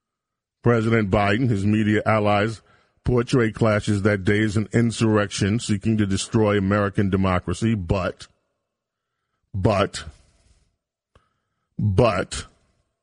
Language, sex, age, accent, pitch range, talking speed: English, male, 40-59, American, 100-125 Hz, 90 wpm